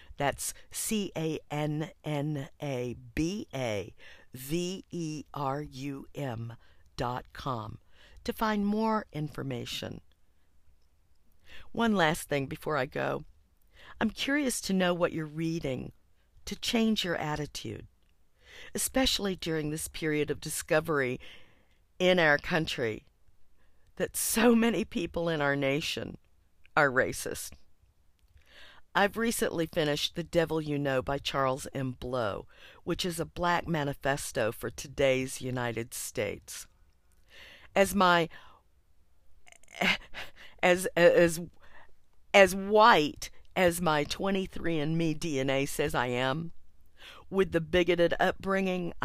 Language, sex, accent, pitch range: English, female, American, 125-180 Hz